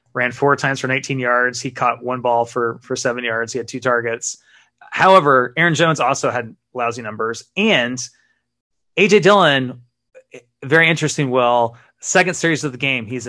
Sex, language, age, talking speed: male, English, 30-49, 165 wpm